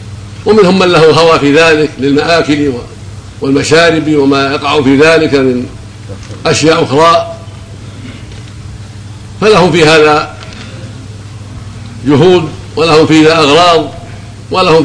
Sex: male